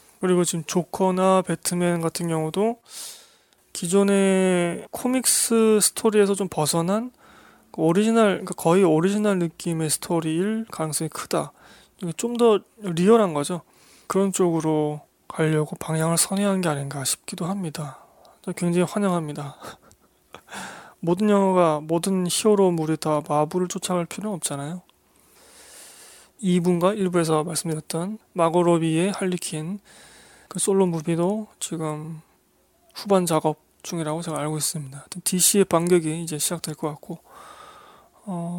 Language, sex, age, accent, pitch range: Korean, male, 20-39, native, 160-195 Hz